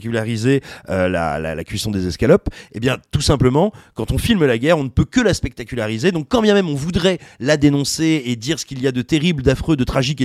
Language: French